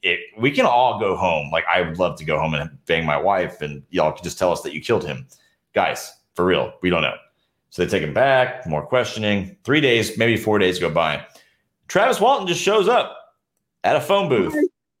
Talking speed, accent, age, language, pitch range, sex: 220 wpm, American, 30-49, English, 90-125 Hz, male